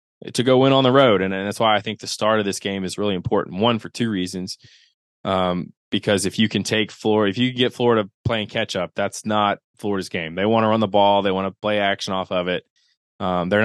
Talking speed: 260 wpm